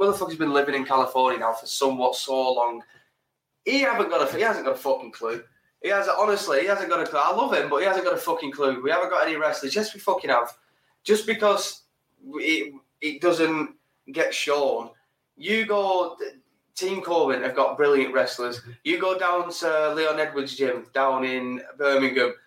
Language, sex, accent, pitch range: English, male, British, 135-195 Hz